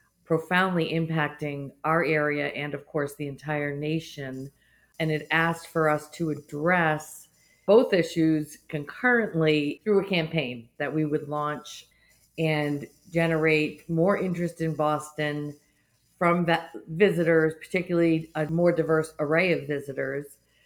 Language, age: English, 50-69